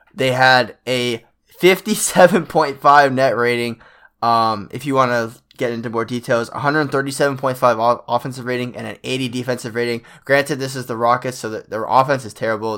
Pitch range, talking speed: 110-135 Hz, 155 wpm